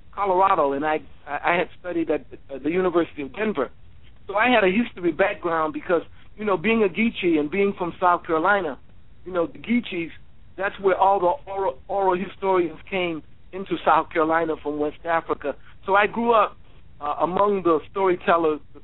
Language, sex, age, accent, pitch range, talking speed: English, male, 60-79, American, 155-195 Hz, 180 wpm